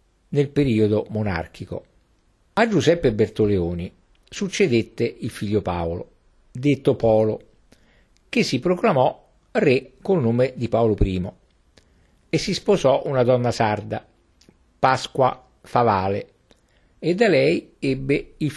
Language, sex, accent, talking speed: Italian, male, native, 110 wpm